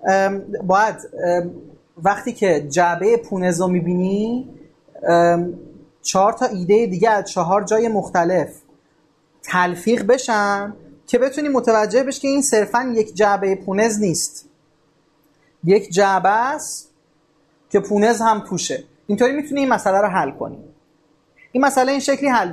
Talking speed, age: 130 wpm, 30-49